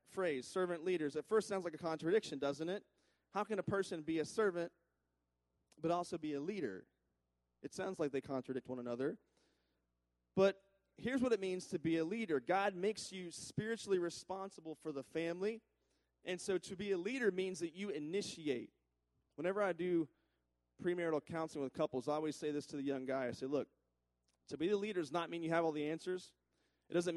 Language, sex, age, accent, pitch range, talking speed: English, male, 30-49, American, 125-170 Hz, 195 wpm